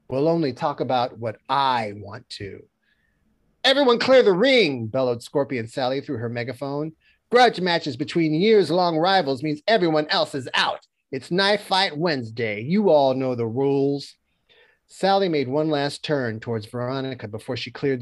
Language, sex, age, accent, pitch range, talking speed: English, male, 40-59, American, 115-155 Hz, 155 wpm